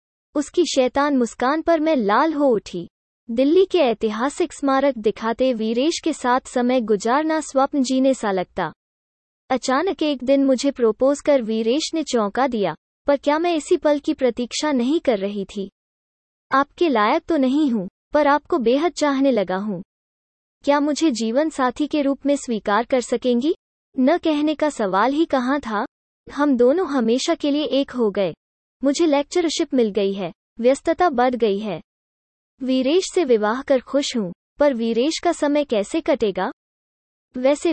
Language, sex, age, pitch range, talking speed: Hindi, female, 20-39, 230-300 Hz, 160 wpm